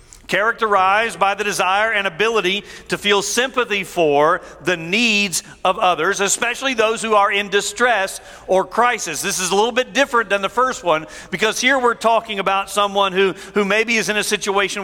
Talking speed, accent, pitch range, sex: 180 wpm, American, 185-225 Hz, male